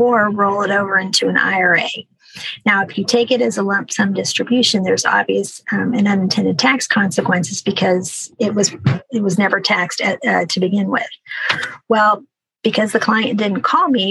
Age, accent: 40-59, American